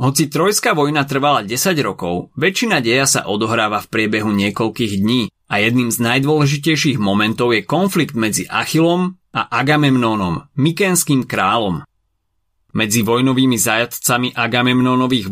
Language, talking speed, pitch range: Slovak, 120 wpm, 105-145 Hz